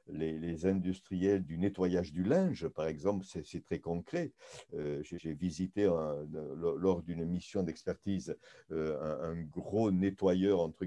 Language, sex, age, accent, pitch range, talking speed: French, male, 60-79, French, 80-100 Hz, 165 wpm